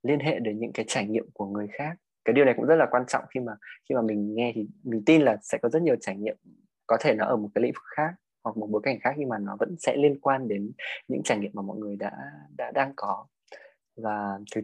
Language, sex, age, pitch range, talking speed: Vietnamese, male, 20-39, 105-135 Hz, 280 wpm